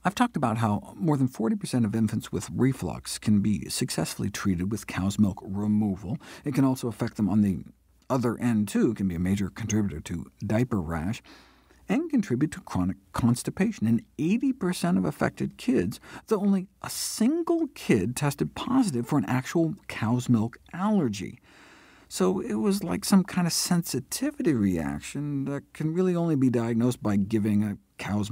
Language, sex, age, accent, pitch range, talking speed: English, male, 50-69, American, 105-170 Hz, 170 wpm